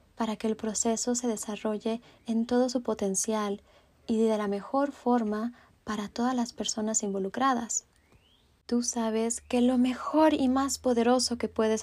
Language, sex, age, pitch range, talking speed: Spanish, female, 20-39, 195-235 Hz, 150 wpm